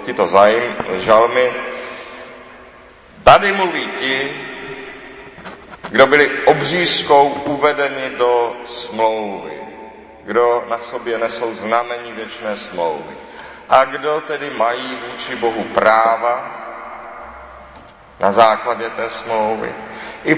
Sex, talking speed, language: male, 85 wpm, Czech